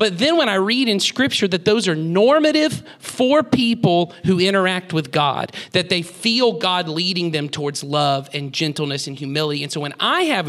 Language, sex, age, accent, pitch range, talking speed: English, male, 40-59, American, 145-200 Hz, 195 wpm